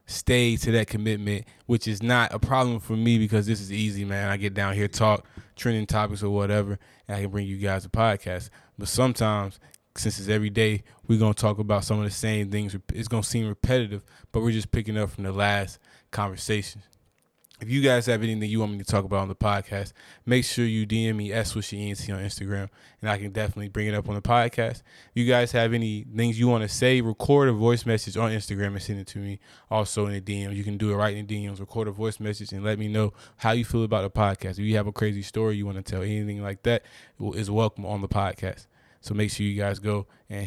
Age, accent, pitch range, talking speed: 20-39, American, 100-115 Hz, 250 wpm